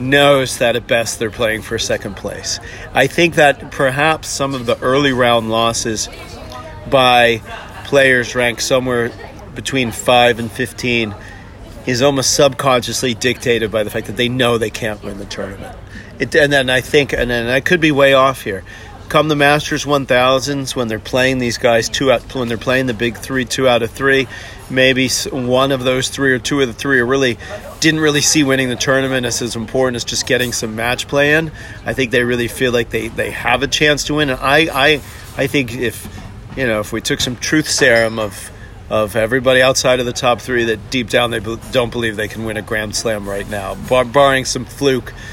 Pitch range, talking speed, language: 110-135 Hz, 205 wpm, English